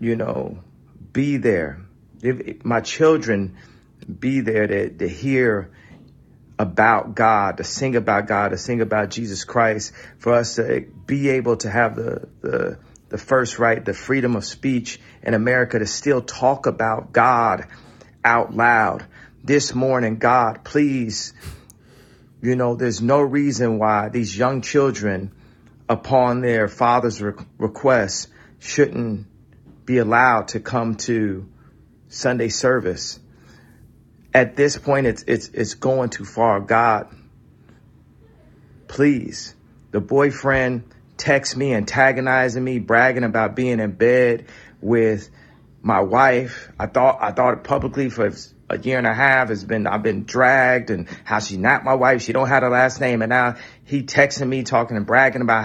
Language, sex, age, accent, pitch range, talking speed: English, male, 40-59, American, 110-130 Hz, 145 wpm